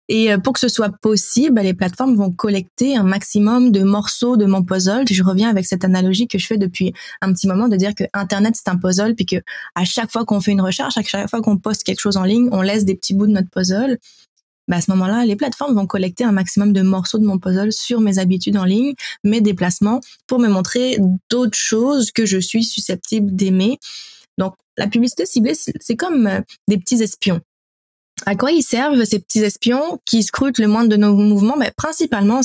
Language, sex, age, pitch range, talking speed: French, female, 20-39, 190-230 Hz, 220 wpm